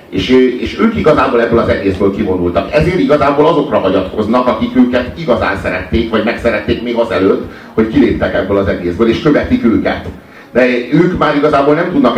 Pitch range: 110-150 Hz